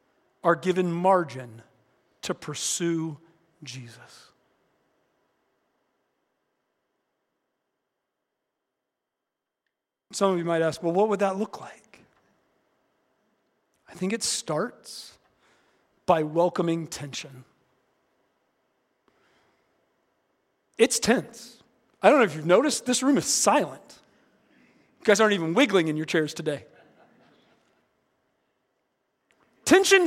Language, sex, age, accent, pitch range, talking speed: English, male, 40-59, American, 180-285 Hz, 90 wpm